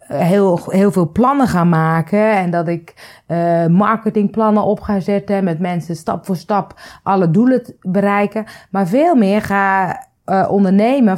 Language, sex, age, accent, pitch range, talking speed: Dutch, female, 30-49, Dutch, 175-230 Hz, 150 wpm